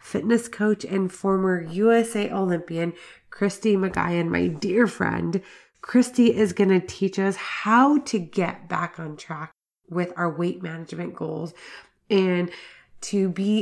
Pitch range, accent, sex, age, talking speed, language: 175-215 Hz, American, female, 30-49, 130 wpm, English